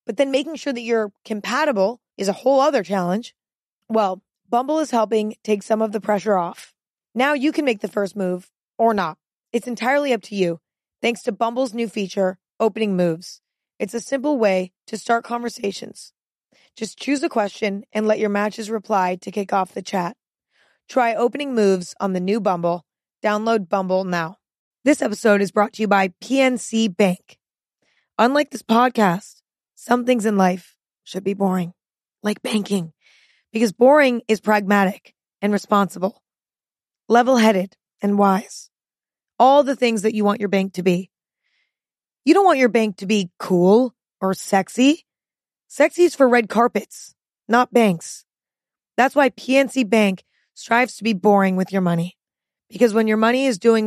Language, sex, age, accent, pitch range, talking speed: English, female, 20-39, American, 195-240 Hz, 165 wpm